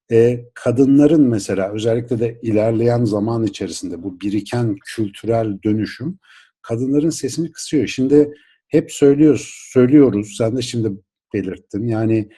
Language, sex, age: Turkish, male, 60-79